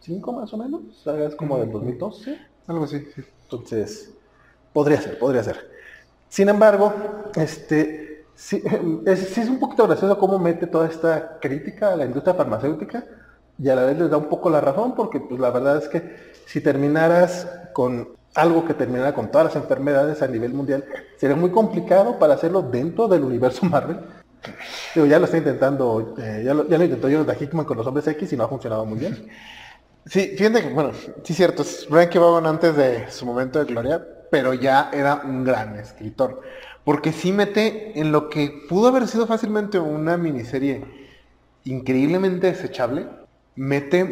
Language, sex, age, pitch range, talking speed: Spanish, male, 30-49, 135-180 Hz, 180 wpm